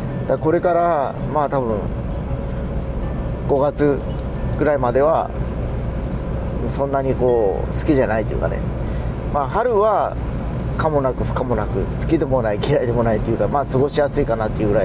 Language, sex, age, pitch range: Japanese, male, 40-59, 115-145 Hz